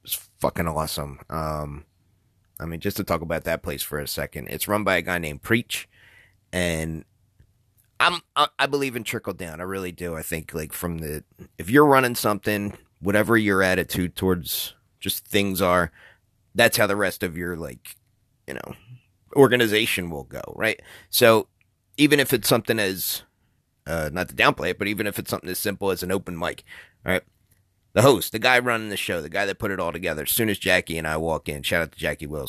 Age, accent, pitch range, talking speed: 30-49, American, 85-110 Hz, 210 wpm